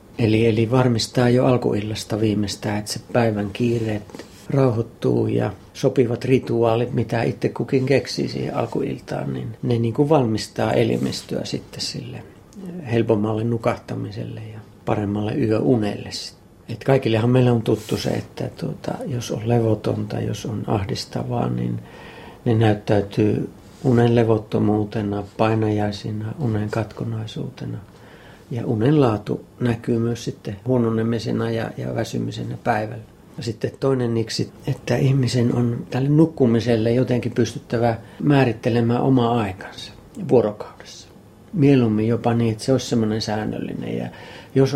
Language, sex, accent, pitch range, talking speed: Finnish, male, native, 110-125 Hz, 115 wpm